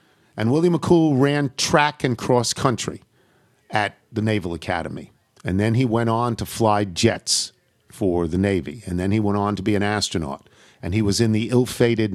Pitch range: 95-120 Hz